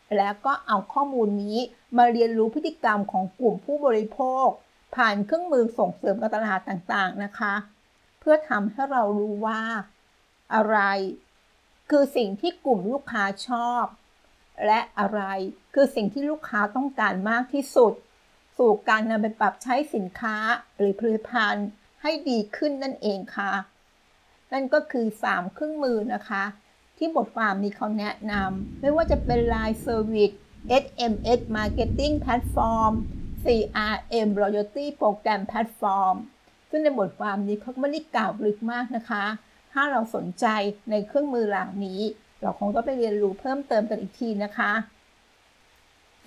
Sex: female